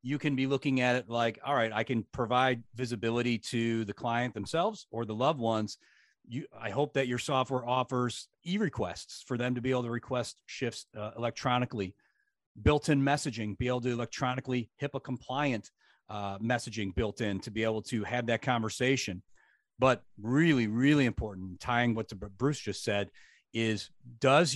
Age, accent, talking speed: 40-59, American, 165 wpm